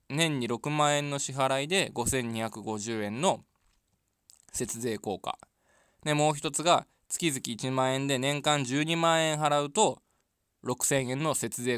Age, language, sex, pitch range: 20-39, Japanese, male, 110-145 Hz